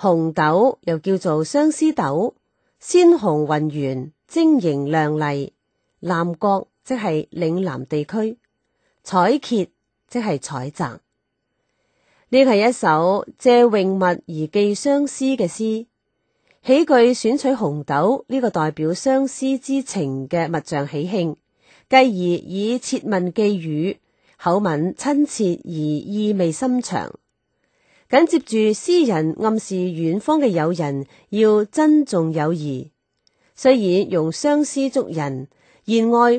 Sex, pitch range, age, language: female, 160-250 Hz, 30-49, Chinese